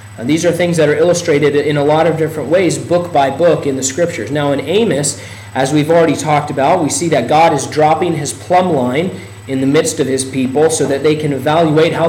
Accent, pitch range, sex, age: American, 140-175 Hz, male, 40-59